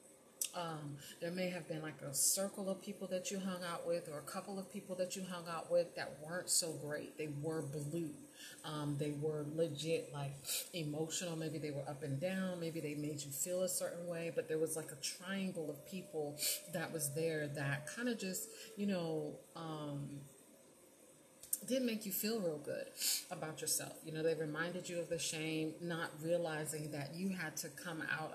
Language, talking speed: English, 200 wpm